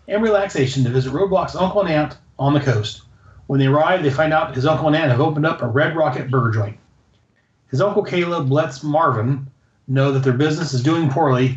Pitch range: 125-160 Hz